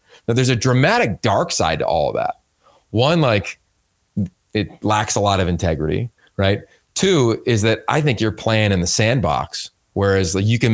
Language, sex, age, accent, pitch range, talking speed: English, male, 30-49, American, 95-135 Hz, 180 wpm